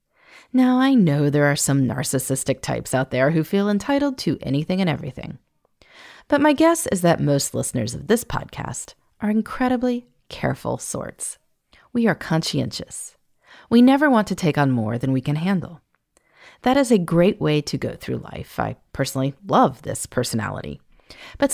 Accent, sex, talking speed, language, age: American, female, 165 wpm, English, 30-49